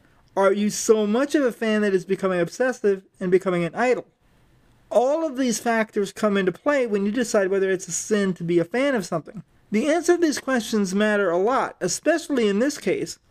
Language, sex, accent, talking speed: English, male, American, 210 wpm